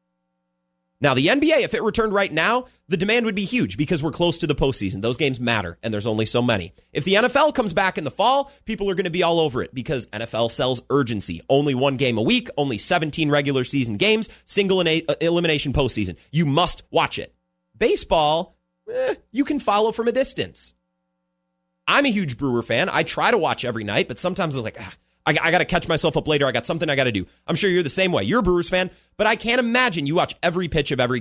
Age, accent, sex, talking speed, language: 30-49, American, male, 235 wpm, English